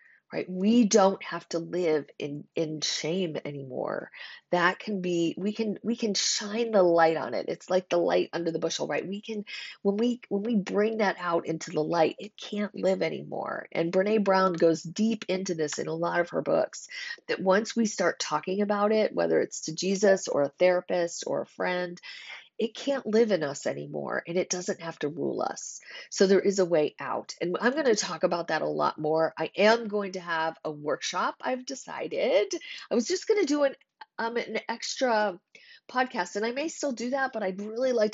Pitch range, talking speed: 170-230 Hz, 210 wpm